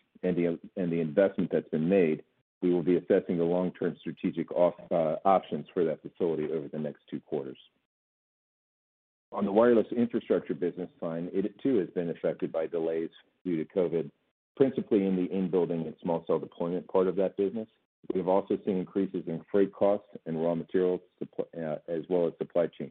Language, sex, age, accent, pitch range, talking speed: English, male, 50-69, American, 80-95 Hz, 185 wpm